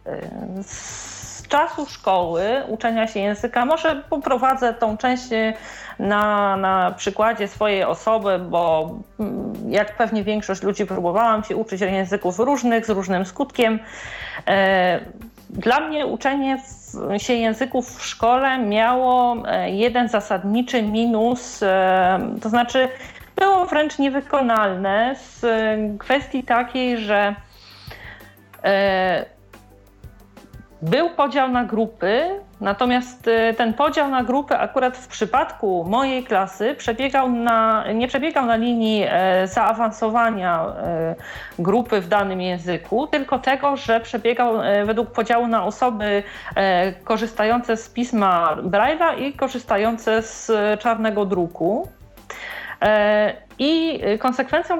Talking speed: 100 wpm